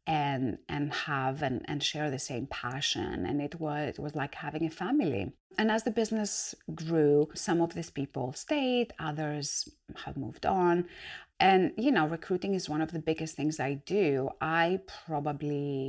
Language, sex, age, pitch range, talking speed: English, female, 30-49, 135-180 Hz, 175 wpm